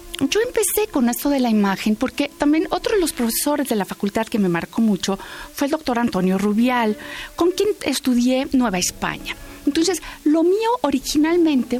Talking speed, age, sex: 175 wpm, 40-59, female